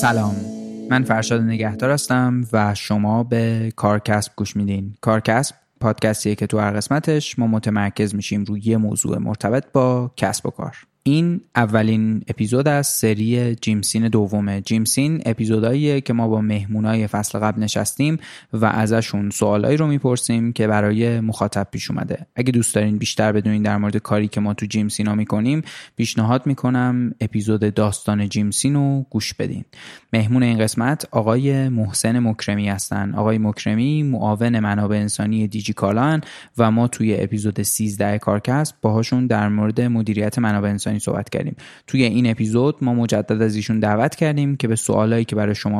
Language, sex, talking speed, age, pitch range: Persian, male, 155 wpm, 20-39, 105-125 Hz